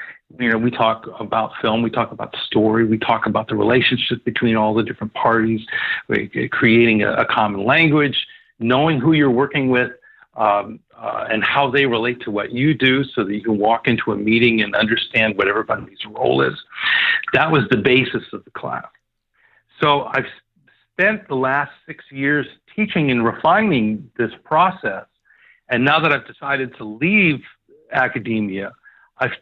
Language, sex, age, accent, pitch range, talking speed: English, male, 50-69, American, 115-140 Hz, 165 wpm